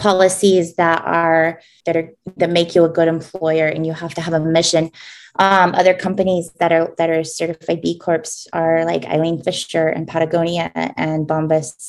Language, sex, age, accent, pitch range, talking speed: English, female, 20-39, American, 160-180 Hz, 180 wpm